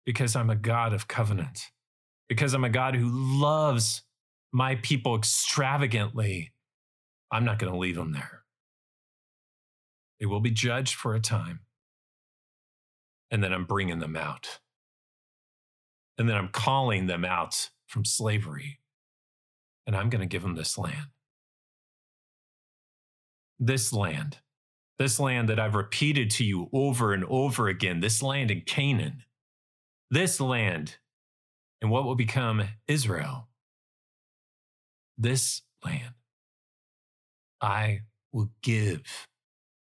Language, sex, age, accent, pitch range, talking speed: English, male, 40-59, American, 100-130 Hz, 120 wpm